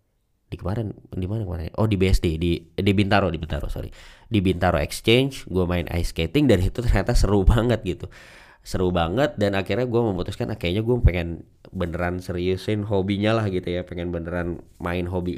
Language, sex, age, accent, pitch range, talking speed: Indonesian, male, 20-39, native, 90-110 Hz, 180 wpm